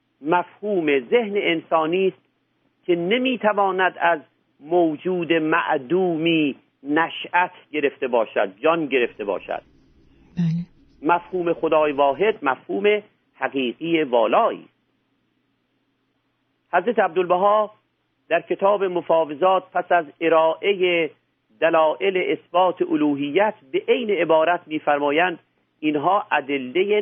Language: Persian